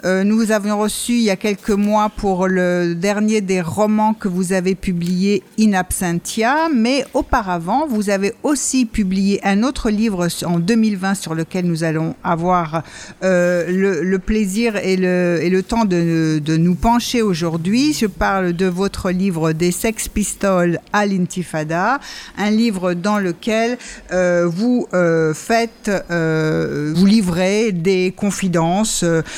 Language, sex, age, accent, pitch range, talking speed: French, female, 50-69, French, 170-210 Hz, 150 wpm